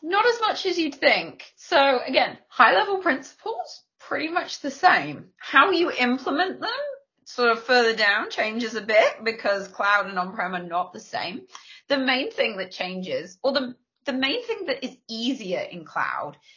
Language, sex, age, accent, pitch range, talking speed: English, female, 30-49, British, 185-265 Hz, 180 wpm